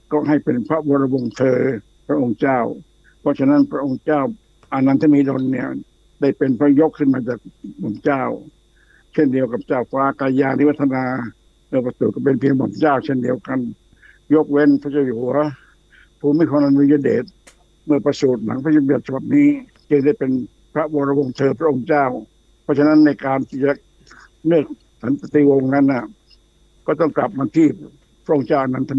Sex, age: male, 60-79